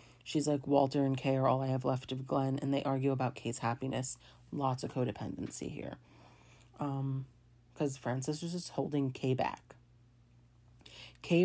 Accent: American